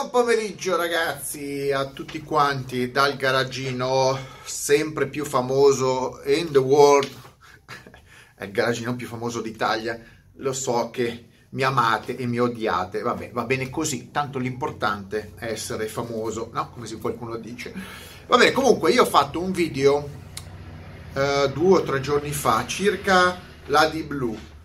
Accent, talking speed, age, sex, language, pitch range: native, 140 wpm, 30-49, male, Italian, 120-150 Hz